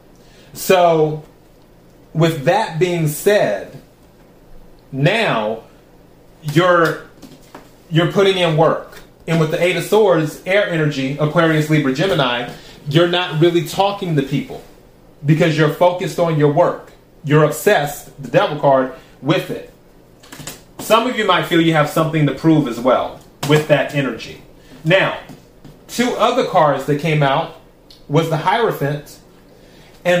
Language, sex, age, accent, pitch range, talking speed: English, male, 30-49, American, 150-180 Hz, 135 wpm